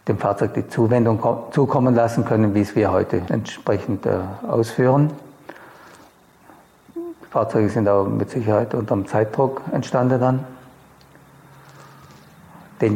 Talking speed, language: 120 wpm, German